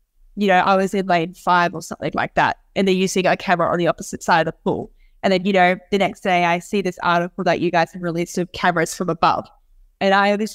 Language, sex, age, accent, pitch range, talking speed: English, female, 10-29, Australian, 170-200 Hz, 260 wpm